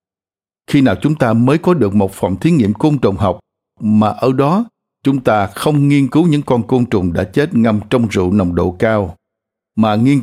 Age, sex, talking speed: 60-79, male, 210 wpm